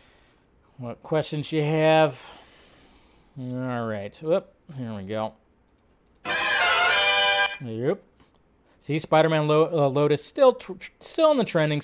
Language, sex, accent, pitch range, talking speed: English, male, American, 140-190 Hz, 85 wpm